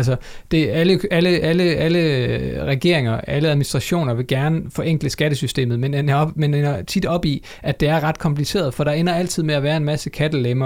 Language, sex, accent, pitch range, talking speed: Danish, male, native, 135-165 Hz, 190 wpm